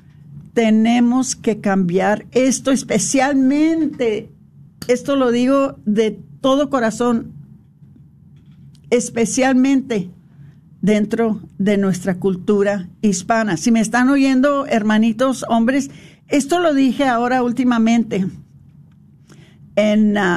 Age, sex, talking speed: 50-69, female, 85 wpm